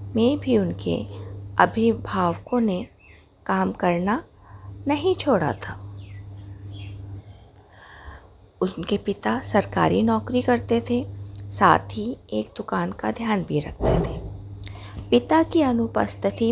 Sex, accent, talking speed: female, native, 100 wpm